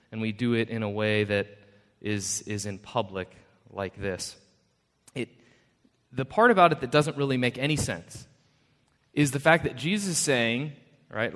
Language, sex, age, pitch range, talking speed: English, male, 30-49, 125-175 Hz, 175 wpm